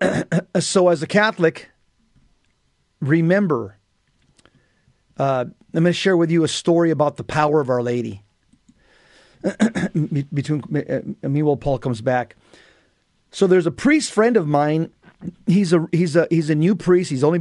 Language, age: English, 40-59